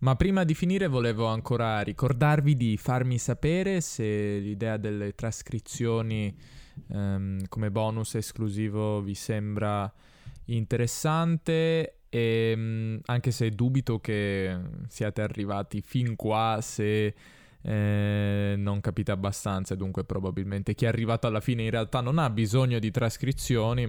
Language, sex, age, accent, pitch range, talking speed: Italian, male, 10-29, native, 105-135 Hz, 125 wpm